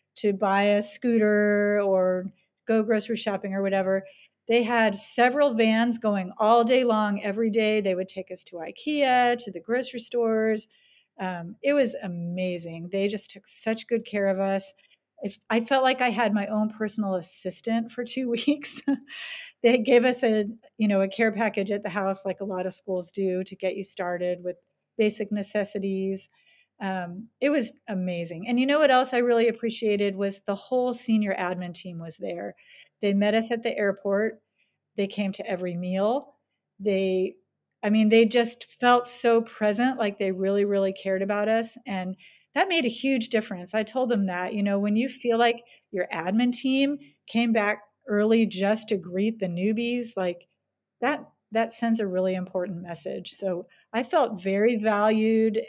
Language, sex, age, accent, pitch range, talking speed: English, female, 40-59, American, 195-235 Hz, 175 wpm